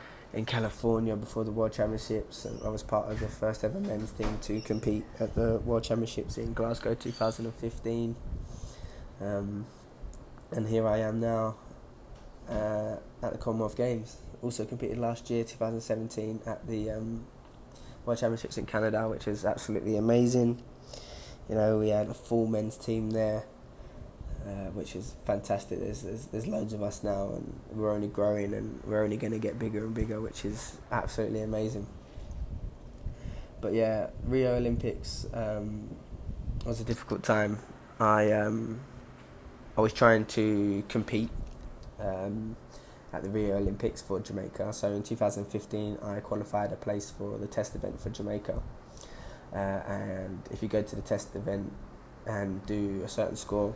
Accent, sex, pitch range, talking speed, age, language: British, male, 105-115 Hz, 155 wpm, 10-29, English